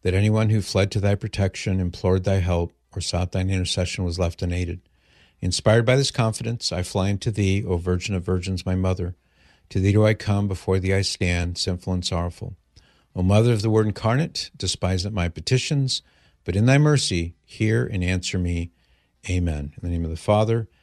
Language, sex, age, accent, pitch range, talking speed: English, male, 60-79, American, 90-115 Hz, 195 wpm